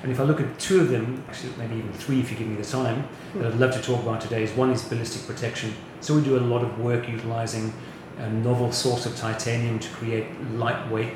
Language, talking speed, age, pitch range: English, 245 wpm, 30-49, 115-130 Hz